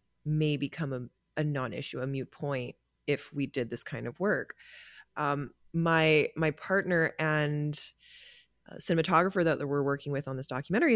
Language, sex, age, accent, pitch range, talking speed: English, female, 20-39, American, 150-180 Hz, 155 wpm